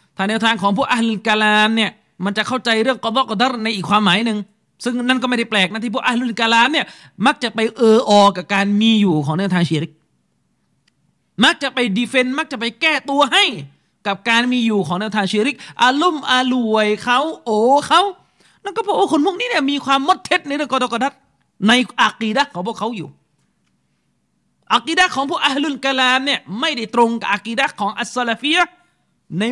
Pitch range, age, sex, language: 210-285 Hz, 30-49, male, Thai